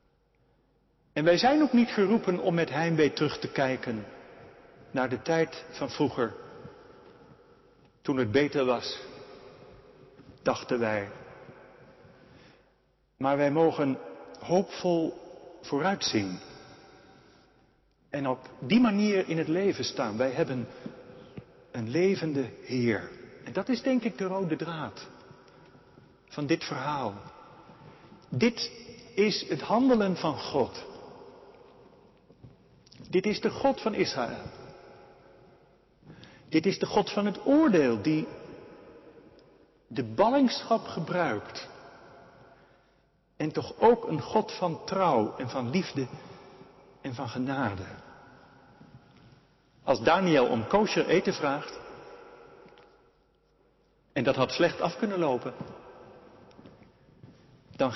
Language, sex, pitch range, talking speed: Dutch, male, 145-230 Hz, 105 wpm